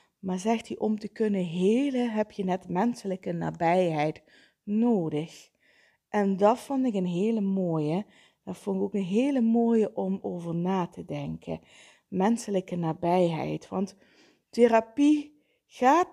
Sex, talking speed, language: female, 140 wpm, Dutch